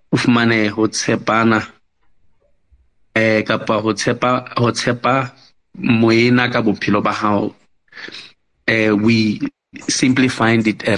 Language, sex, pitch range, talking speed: English, male, 110-125 Hz, 100 wpm